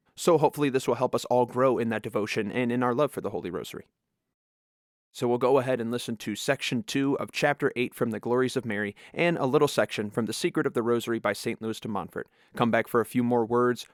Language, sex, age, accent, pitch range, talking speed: English, male, 30-49, American, 115-140 Hz, 250 wpm